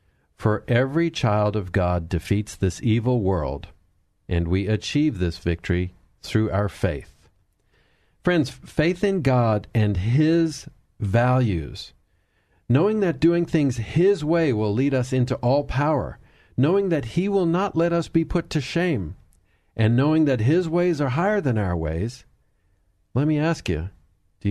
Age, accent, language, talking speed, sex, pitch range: 50-69, American, English, 150 wpm, male, 95-135 Hz